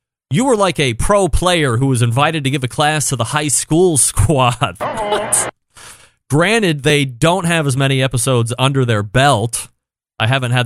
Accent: American